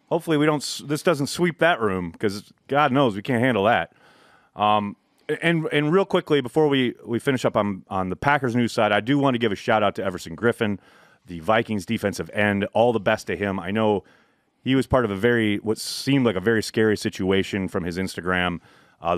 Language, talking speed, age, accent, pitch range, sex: English, 220 wpm, 30-49, American, 95-125 Hz, male